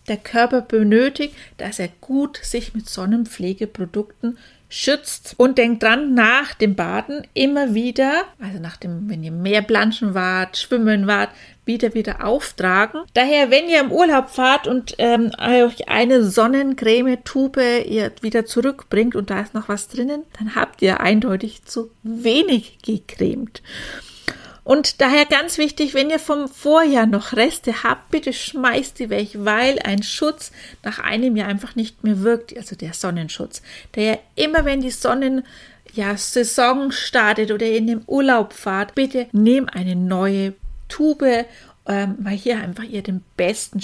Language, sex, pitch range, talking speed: German, female, 210-265 Hz, 150 wpm